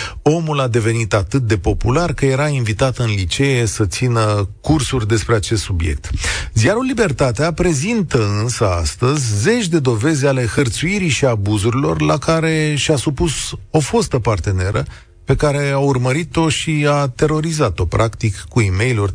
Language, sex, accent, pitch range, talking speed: Romanian, male, native, 105-150 Hz, 145 wpm